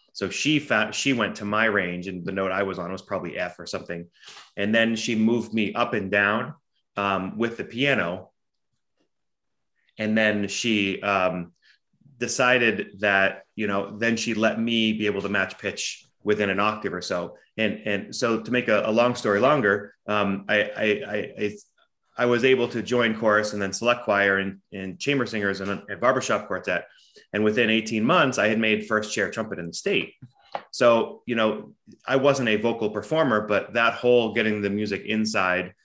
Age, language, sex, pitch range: 30-49, English, male, 100-115 Hz